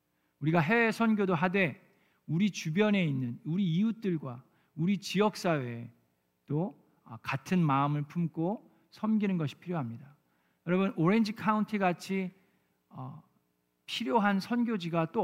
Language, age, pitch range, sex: Korean, 50-69, 135-180 Hz, male